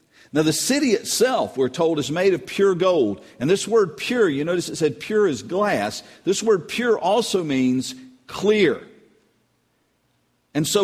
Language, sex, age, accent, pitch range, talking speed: English, male, 50-69, American, 155-235 Hz, 165 wpm